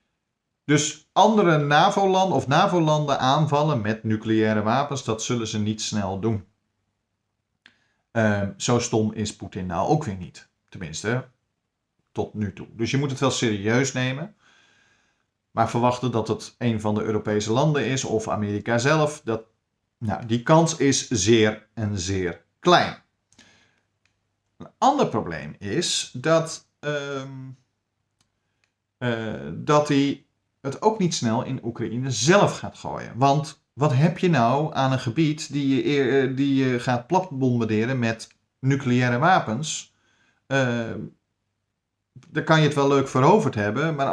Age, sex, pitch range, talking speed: 50-69, male, 110-145 Hz, 135 wpm